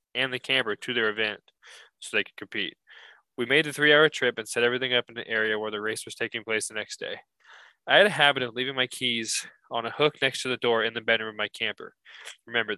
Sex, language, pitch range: male, English, 110-135 Hz